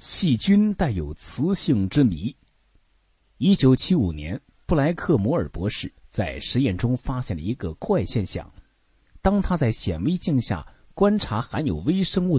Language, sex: Chinese, male